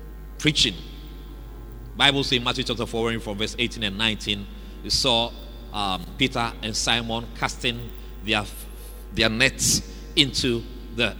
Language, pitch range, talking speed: English, 115-165 Hz, 130 wpm